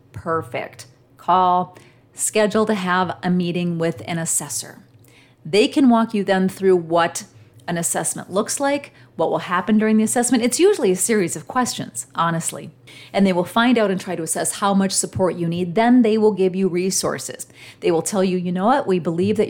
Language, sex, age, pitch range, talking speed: English, female, 40-59, 160-195 Hz, 195 wpm